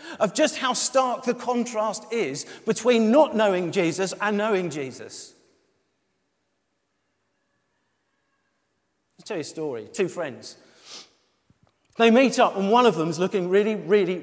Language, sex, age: English, male, 40-59